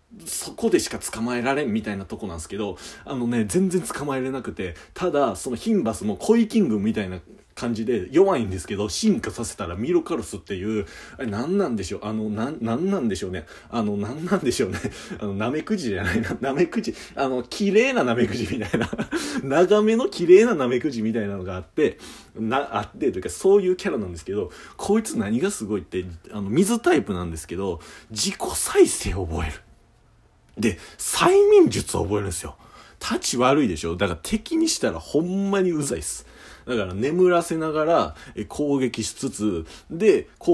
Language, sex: Japanese, male